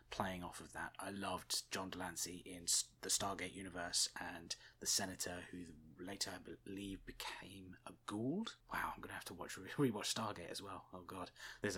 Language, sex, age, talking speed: English, male, 20-39, 185 wpm